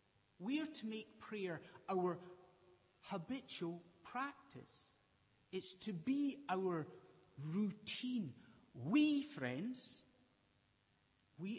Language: English